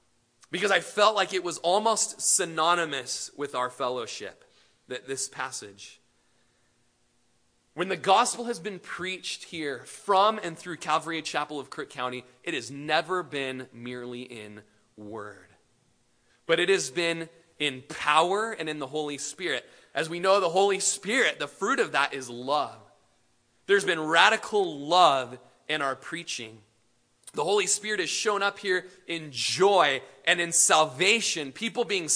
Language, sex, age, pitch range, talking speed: English, male, 20-39, 145-220 Hz, 150 wpm